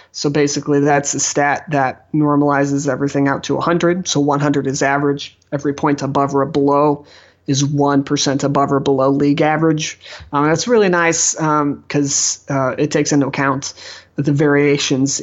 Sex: male